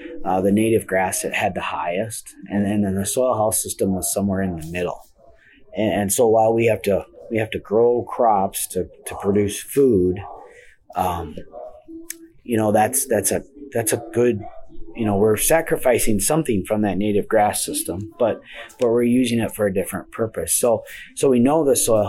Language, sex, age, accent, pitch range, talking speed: English, male, 30-49, American, 95-125 Hz, 190 wpm